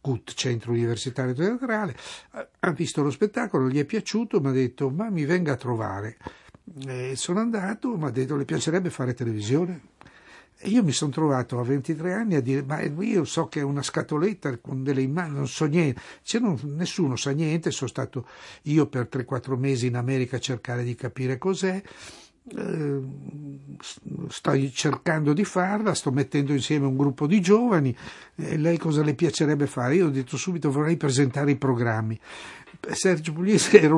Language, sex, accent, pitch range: Italian, male, native, 125-165 Hz